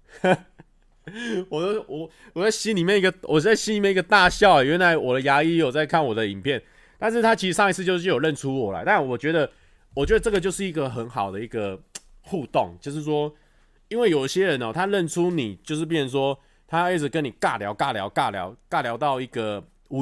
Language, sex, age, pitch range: Chinese, male, 20-39, 105-160 Hz